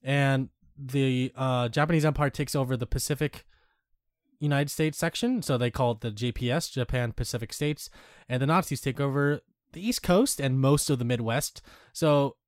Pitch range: 115-140 Hz